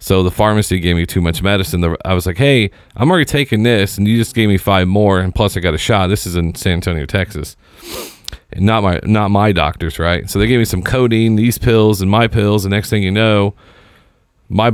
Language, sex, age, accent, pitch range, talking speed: English, male, 40-59, American, 90-115 Hz, 240 wpm